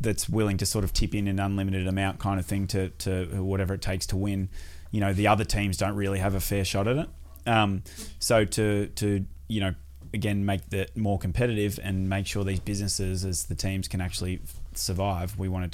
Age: 20-39